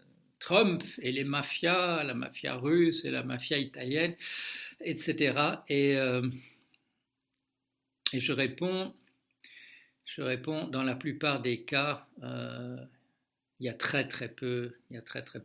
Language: French